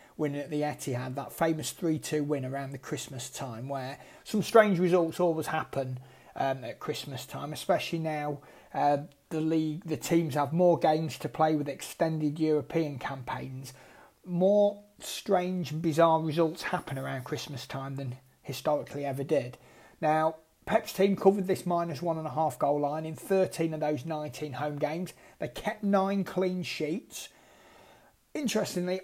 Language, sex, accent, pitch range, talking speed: English, male, British, 140-185 Hz, 155 wpm